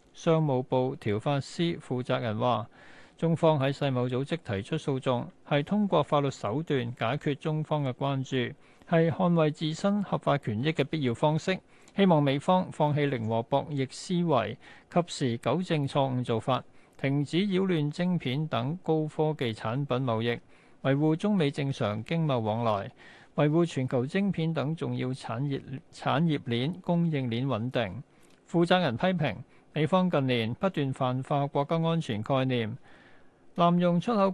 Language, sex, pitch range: Chinese, male, 125-160 Hz